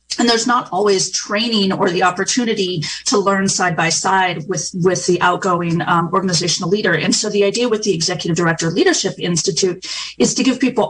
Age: 30-49